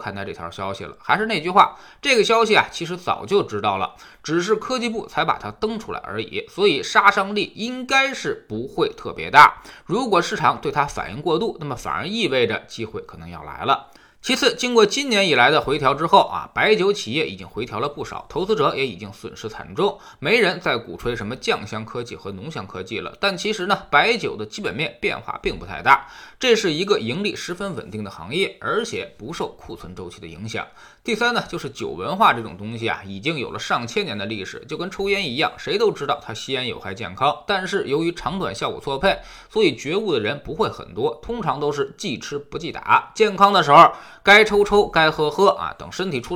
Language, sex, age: Chinese, male, 20-39